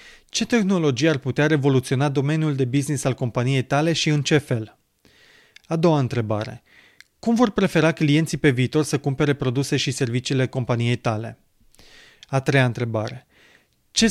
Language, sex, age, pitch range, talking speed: Romanian, male, 20-39, 130-165 Hz, 150 wpm